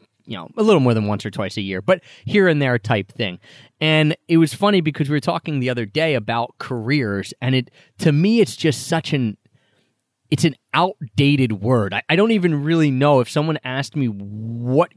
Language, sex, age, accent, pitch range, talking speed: English, male, 30-49, American, 120-160 Hz, 215 wpm